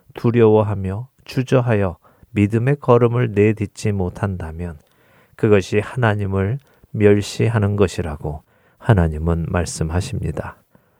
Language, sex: Korean, male